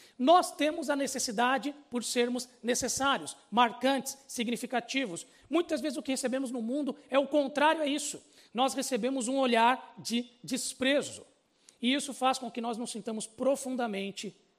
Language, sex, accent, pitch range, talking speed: Portuguese, male, Brazilian, 235-280 Hz, 150 wpm